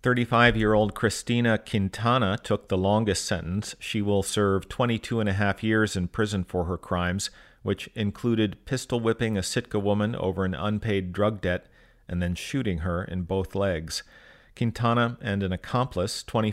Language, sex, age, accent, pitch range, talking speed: English, male, 40-59, American, 95-110 Hz, 155 wpm